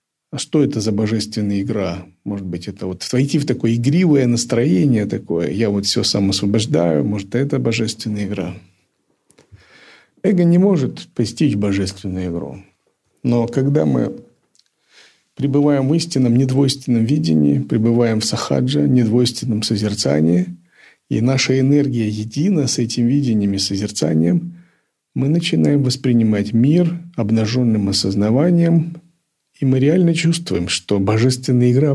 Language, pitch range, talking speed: Russian, 105-150 Hz, 130 wpm